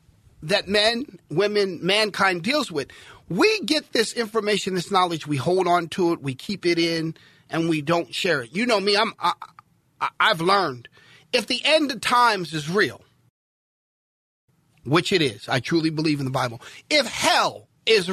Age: 40-59